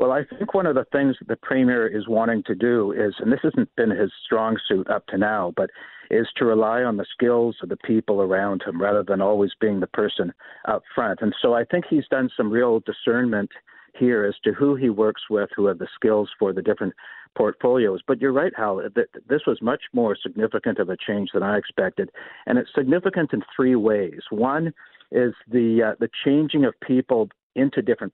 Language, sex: English, male